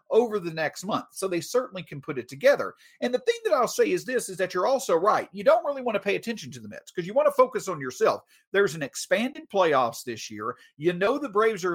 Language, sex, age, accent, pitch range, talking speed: English, male, 40-59, American, 165-245 Hz, 265 wpm